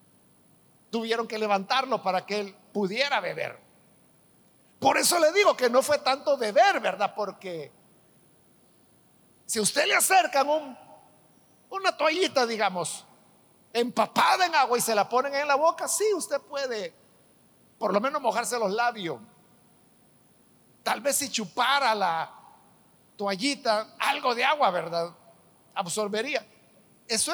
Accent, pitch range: Mexican, 210-275 Hz